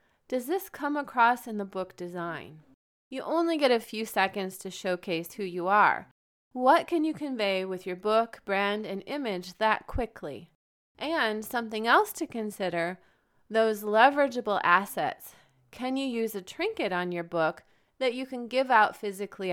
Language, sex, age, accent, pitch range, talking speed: English, female, 30-49, American, 180-250 Hz, 165 wpm